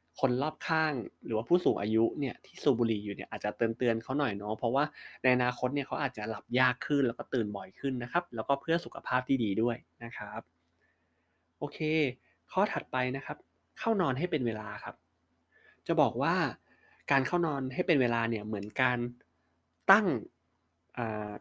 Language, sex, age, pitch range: Thai, male, 20-39, 105-140 Hz